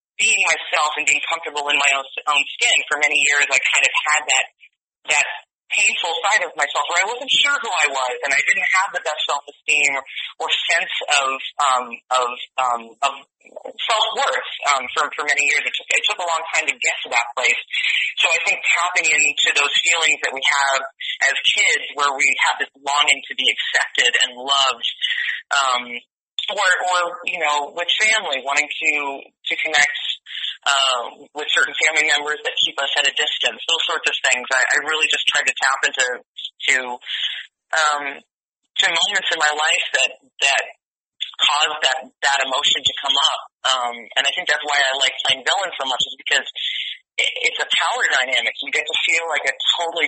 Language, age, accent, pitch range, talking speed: English, 30-49, American, 140-170 Hz, 195 wpm